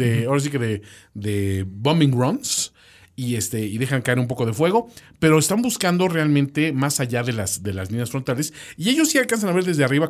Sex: male